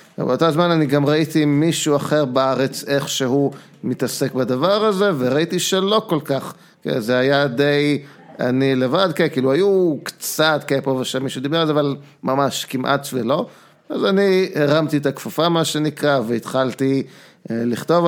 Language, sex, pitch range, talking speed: Hebrew, male, 130-155 Hz, 150 wpm